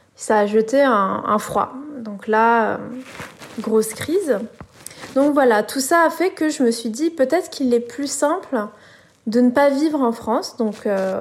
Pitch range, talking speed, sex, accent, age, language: 220-265 Hz, 180 wpm, female, French, 20-39, French